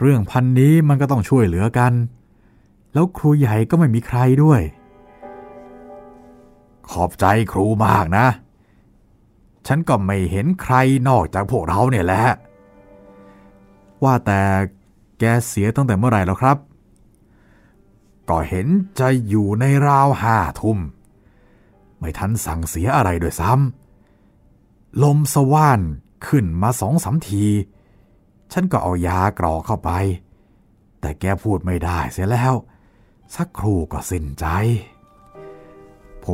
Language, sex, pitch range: Thai, male, 100-135 Hz